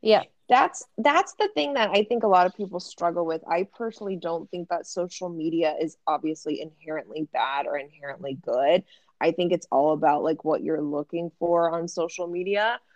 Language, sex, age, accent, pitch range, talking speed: English, female, 20-39, American, 155-190 Hz, 190 wpm